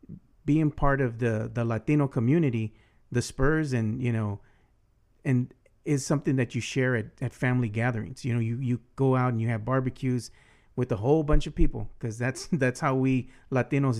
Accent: American